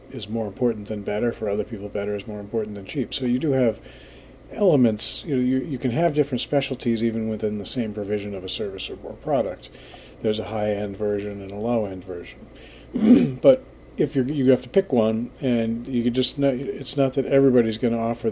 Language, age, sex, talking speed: English, 40-59, male, 215 wpm